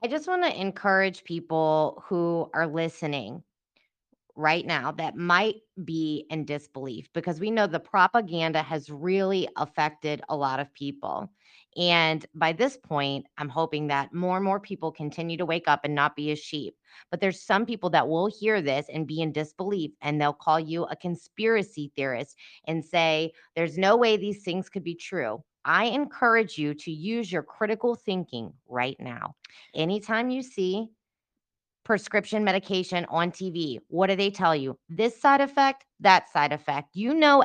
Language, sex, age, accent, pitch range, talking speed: English, female, 20-39, American, 160-220 Hz, 170 wpm